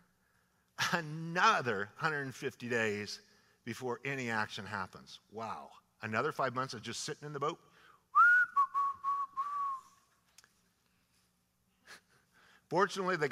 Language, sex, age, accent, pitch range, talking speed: English, male, 50-69, American, 110-165 Hz, 85 wpm